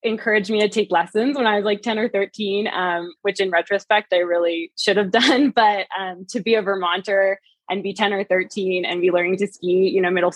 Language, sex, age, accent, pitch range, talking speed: English, female, 20-39, American, 180-215 Hz, 230 wpm